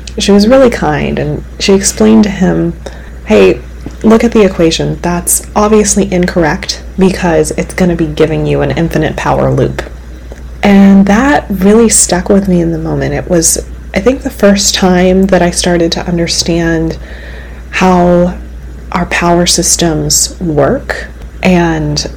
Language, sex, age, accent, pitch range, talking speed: English, female, 30-49, American, 155-195 Hz, 150 wpm